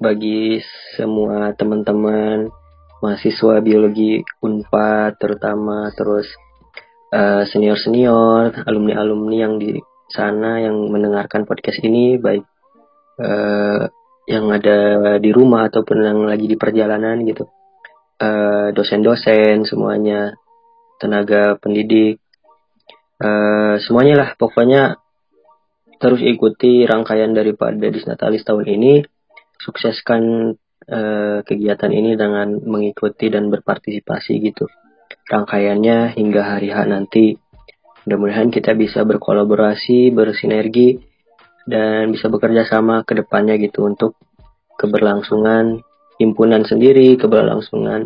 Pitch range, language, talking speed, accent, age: 105-115 Hz, Indonesian, 95 wpm, native, 20-39